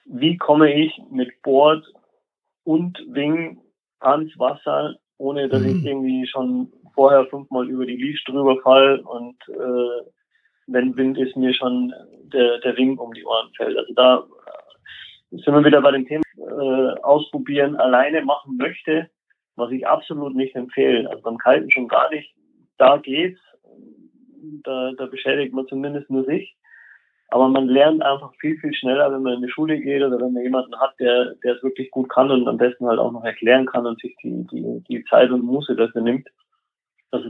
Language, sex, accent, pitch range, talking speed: German, male, German, 125-155 Hz, 175 wpm